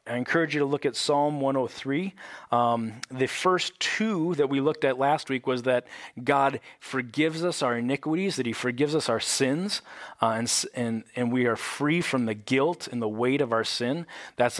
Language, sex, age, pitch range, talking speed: English, male, 30-49, 120-140 Hz, 195 wpm